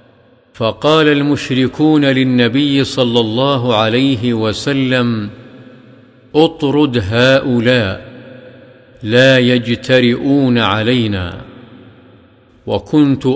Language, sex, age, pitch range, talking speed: Arabic, male, 50-69, 120-135 Hz, 60 wpm